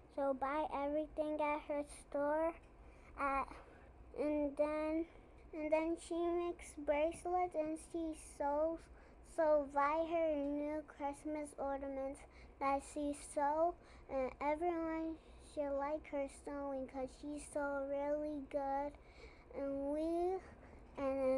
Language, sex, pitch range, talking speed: English, male, 275-315 Hz, 115 wpm